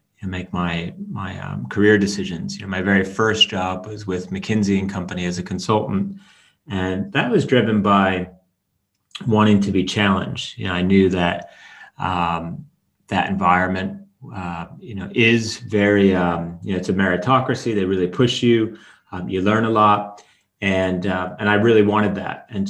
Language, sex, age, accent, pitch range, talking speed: English, male, 30-49, American, 95-110 Hz, 175 wpm